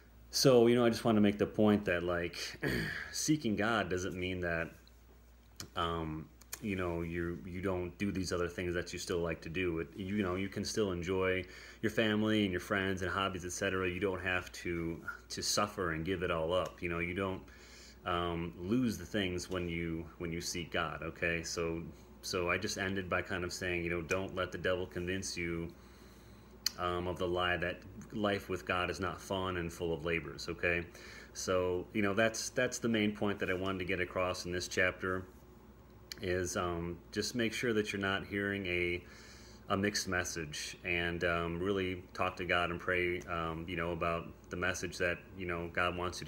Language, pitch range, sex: English, 85-95 Hz, male